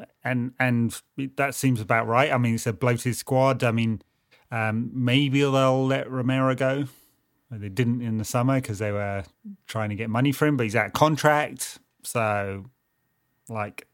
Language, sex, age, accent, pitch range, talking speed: English, male, 30-49, British, 105-130 Hz, 175 wpm